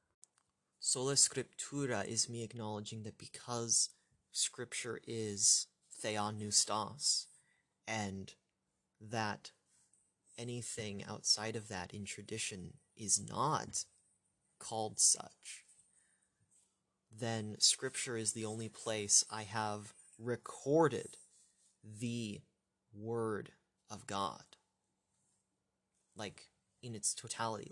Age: 30-49